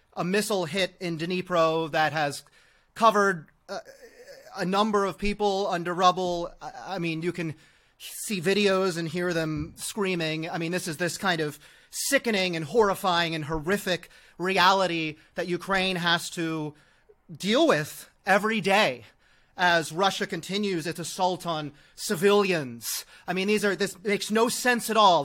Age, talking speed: 30-49, 150 wpm